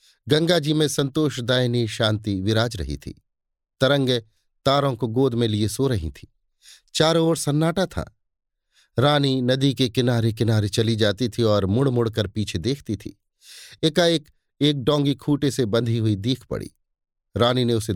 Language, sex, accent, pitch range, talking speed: Hindi, male, native, 105-145 Hz, 165 wpm